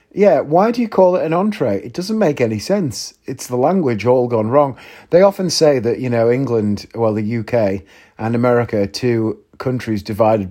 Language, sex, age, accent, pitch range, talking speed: English, male, 30-49, British, 110-150 Hz, 195 wpm